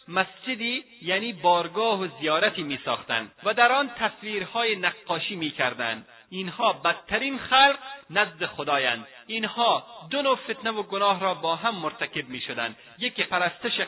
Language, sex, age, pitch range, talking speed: Persian, male, 30-49, 175-240 Hz, 135 wpm